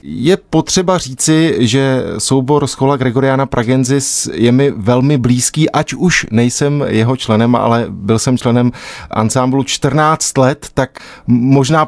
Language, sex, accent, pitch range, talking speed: Czech, male, native, 120-150 Hz, 135 wpm